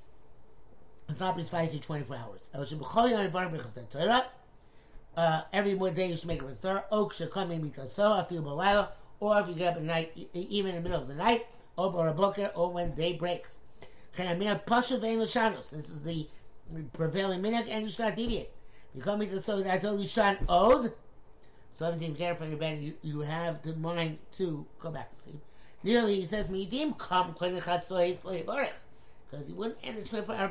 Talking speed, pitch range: 155 wpm, 150-200 Hz